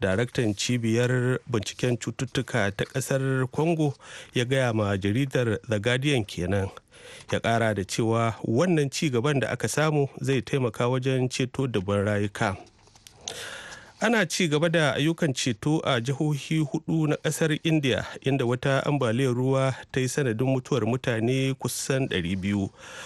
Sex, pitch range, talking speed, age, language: male, 105-130 Hz, 120 wpm, 40-59, English